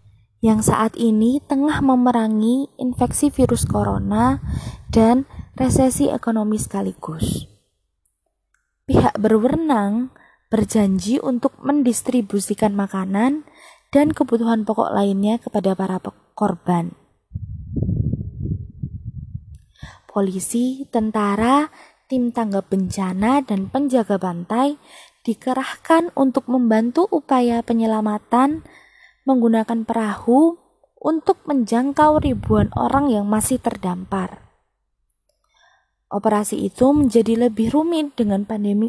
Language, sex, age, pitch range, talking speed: Indonesian, female, 20-39, 205-260 Hz, 85 wpm